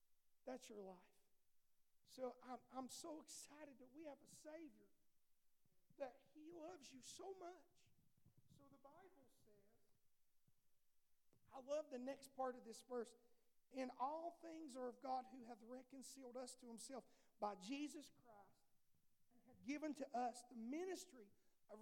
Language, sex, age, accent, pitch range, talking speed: English, male, 50-69, American, 245-315 Hz, 150 wpm